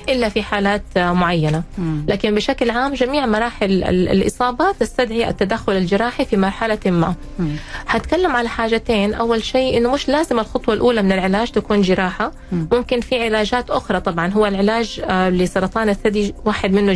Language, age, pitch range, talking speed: Arabic, 20-39, 190-240 Hz, 145 wpm